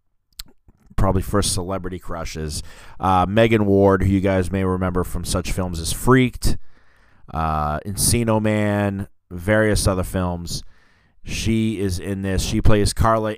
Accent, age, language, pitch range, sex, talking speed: American, 20-39, English, 90-105 Hz, male, 135 wpm